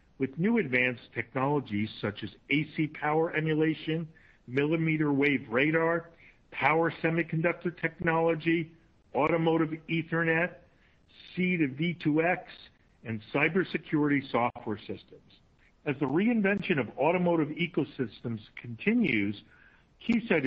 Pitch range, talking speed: 125-170 Hz, 95 wpm